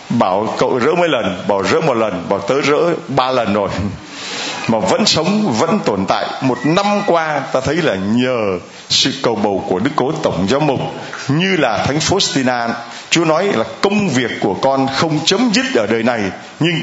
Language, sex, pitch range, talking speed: Vietnamese, male, 120-160 Hz, 200 wpm